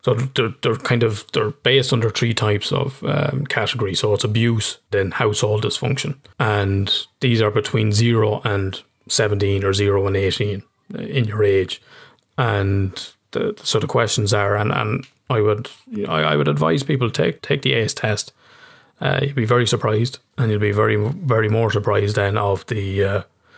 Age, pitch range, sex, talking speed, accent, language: 20-39, 105-125 Hz, male, 180 wpm, Irish, English